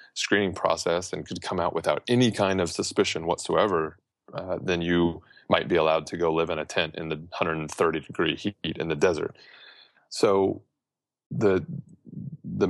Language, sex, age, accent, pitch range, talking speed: English, male, 30-49, American, 85-105 Hz, 165 wpm